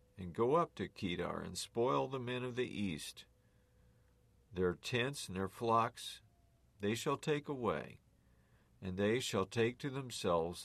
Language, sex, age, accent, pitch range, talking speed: English, male, 50-69, American, 95-125 Hz, 150 wpm